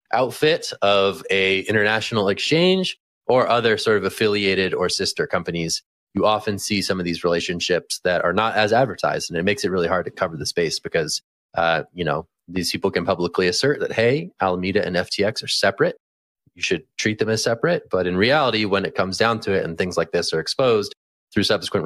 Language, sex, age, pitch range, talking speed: English, male, 20-39, 90-110 Hz, 205 wpm